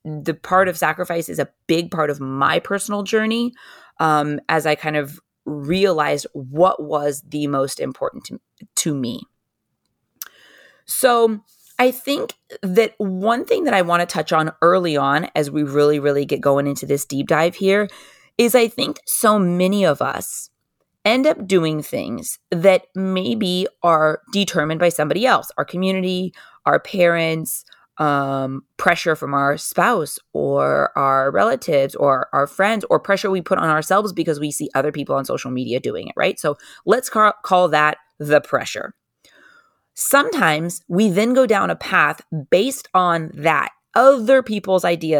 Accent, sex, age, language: American, female, 20-39, English